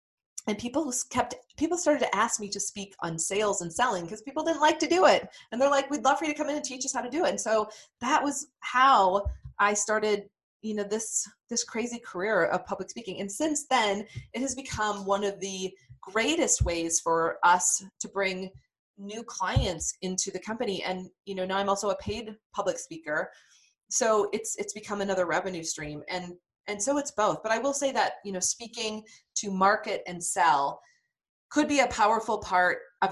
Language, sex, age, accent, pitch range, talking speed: English, female, 30-49, American, 190-260 Hz, 205 wpm